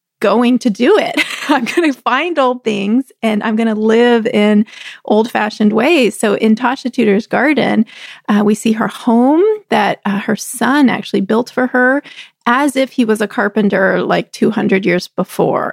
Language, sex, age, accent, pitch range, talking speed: English, female, 30-49, American, 215-255 Hz, 175 wpm